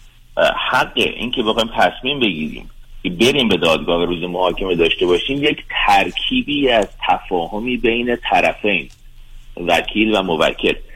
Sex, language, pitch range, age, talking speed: male, Persian, 90-125 Hz, 40-59, 125 wpm